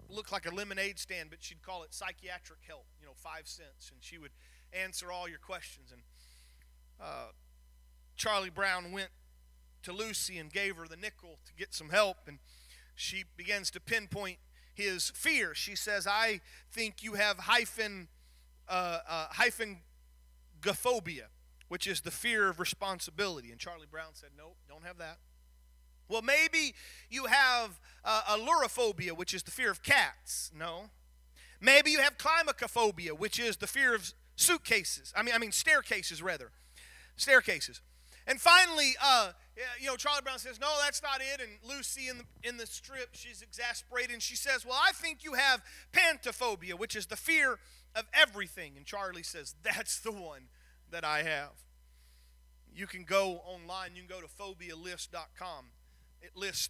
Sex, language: male, English